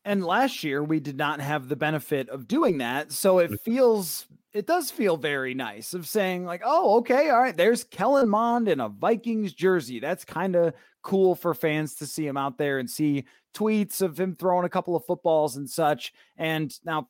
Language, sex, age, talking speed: English, male, 30-49, 205 wpm